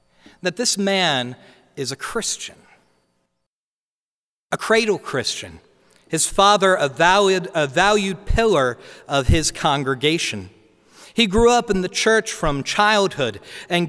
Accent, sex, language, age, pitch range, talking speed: American, male, English, 40-59, 140-205 Hz, 120 wpm